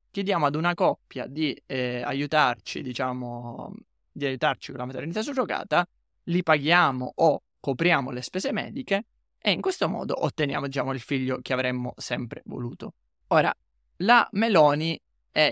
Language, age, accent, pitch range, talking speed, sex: Italian, 20-39, native, 130-175 Hz, 145 wpm, male